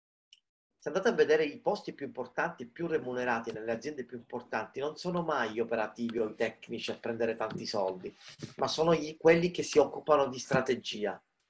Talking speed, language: 190 wpm, Italian